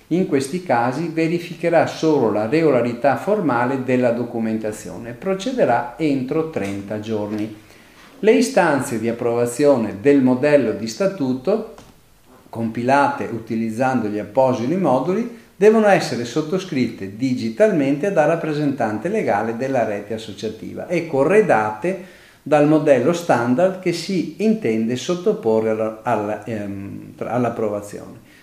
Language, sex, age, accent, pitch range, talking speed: Italian, male, 50-69, native, 115-170 Hz, 100 wpm